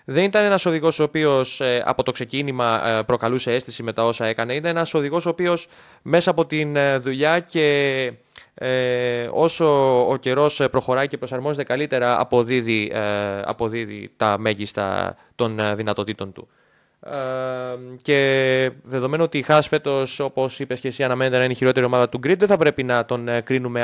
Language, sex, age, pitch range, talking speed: Greek, male, 20-39, 115-145 Hz, 160 wpm